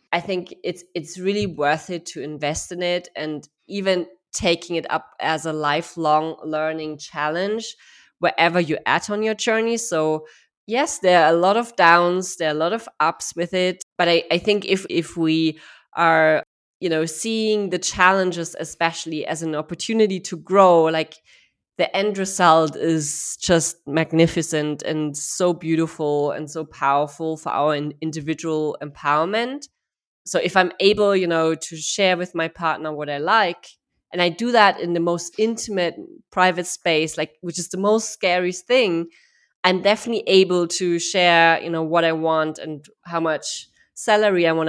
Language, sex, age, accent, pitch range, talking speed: English, female, 20-39, German, 160-195 Hz, 170 wpm